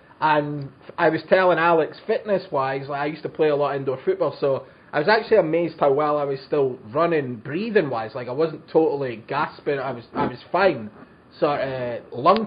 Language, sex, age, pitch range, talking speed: English, male, 20-39, 125-155 Hz, 195 wpm